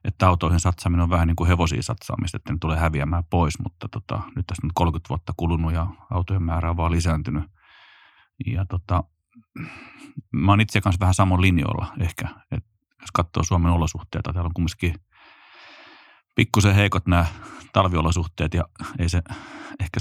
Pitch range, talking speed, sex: 85-100 Hz, 160 wpm, male